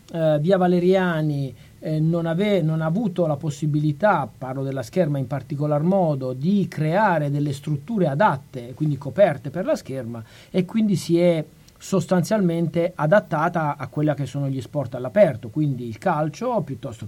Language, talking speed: Italian, 150 wpm